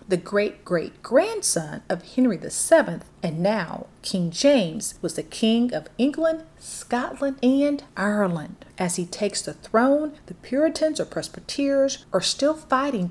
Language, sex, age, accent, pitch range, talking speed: English, female, 40-59, American, 190-290 Hz, 145 wpm